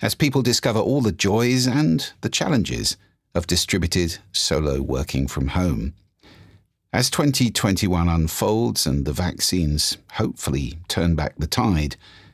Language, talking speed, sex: English, 125 wpm, male